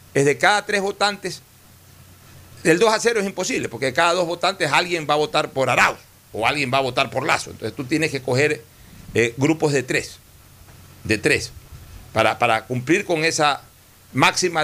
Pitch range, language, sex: 115-170 Hz, Spanish, male